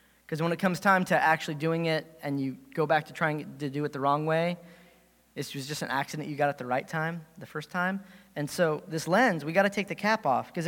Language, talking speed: English, 260 wpm